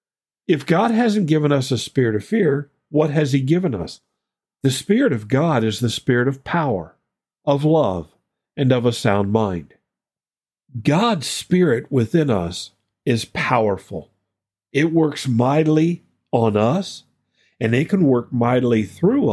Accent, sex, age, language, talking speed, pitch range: American, male, 50-69, English, 145 wpm, 120-165 Hz